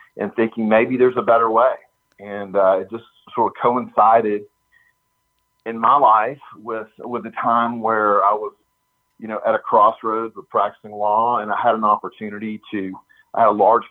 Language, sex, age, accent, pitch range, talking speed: English, male, 40-59, American, 105-120 Hz, 180 wpm